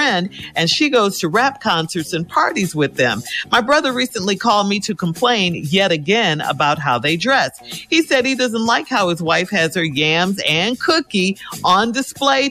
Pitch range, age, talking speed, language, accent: 165-255 Hz, 50-69, 180 wpm, English, American